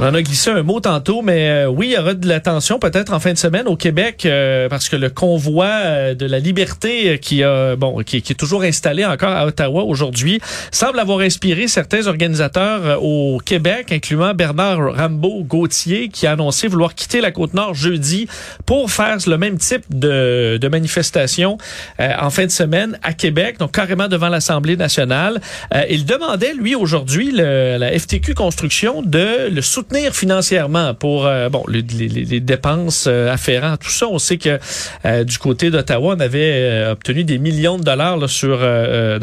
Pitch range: 140-190 Hz